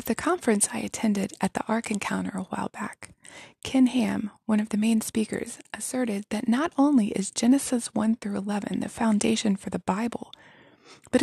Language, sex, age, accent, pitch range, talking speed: English, female, 20-39, American, 205-245 Hz, 175 wpm